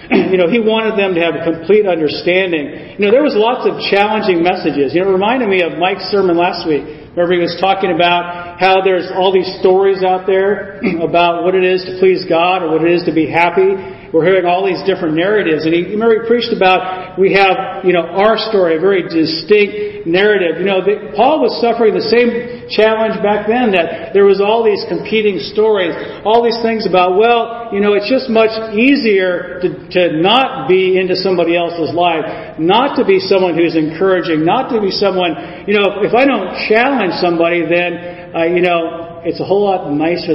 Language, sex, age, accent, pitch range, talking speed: English, male, 40-59, American, 175-210 Hz, 210 wpm